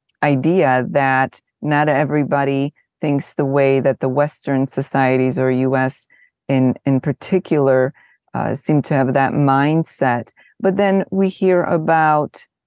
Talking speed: 130 wpm